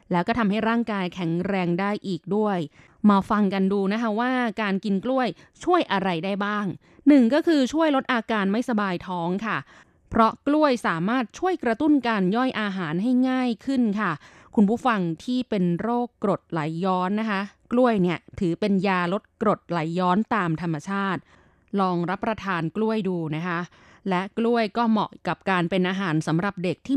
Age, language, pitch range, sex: 20-39, Thai, 180-240 Hz, female